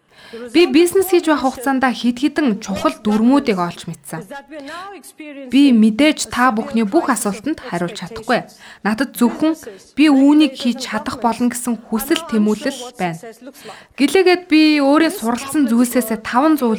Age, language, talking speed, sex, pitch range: 20-39, English, 100 wpm, female, 210-285 Hz